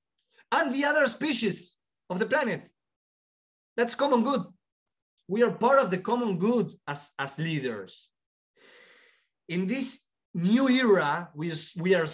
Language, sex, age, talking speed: English, male, 30-49, 135 wpm